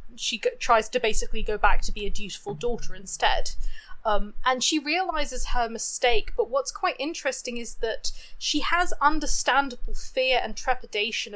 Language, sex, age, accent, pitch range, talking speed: English, female, 20-39, British, 220-275 Hz, 160 wpm